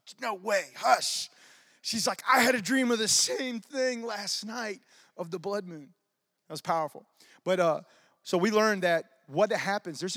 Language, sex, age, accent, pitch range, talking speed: English, male, 30-49, American, 160-220 Hz, 185 wpm